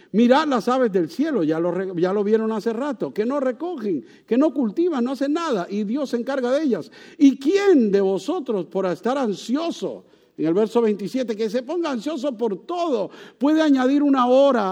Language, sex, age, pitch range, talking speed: English, male, 50-69, 200-275 Hz, 190 wpm